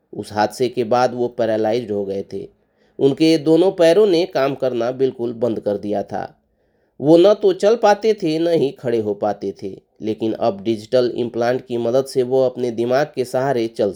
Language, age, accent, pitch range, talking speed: Hindi, 30-49, native, 115-160 Hz, 195 wpm